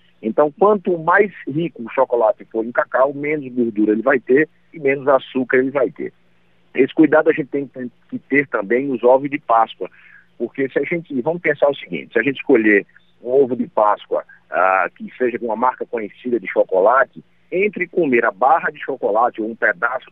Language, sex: Portuguese, male